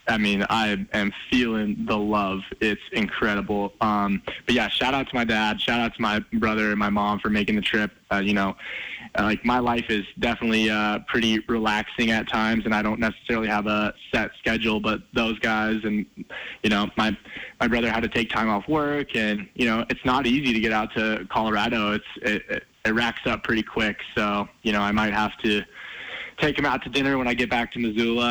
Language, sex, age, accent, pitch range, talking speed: English, male, 20-39, American, 105-115 Hz, 215 wpm